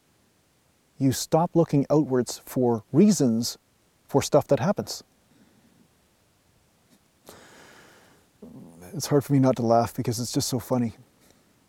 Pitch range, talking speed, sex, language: 120-145 Hz, 115 wpm, male, English